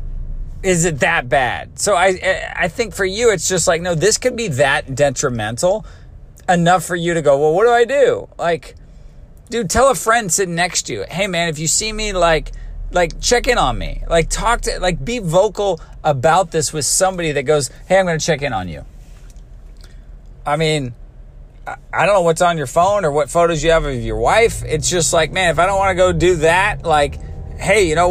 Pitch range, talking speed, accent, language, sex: 120-185 Hz, 220 wpm, American, English, male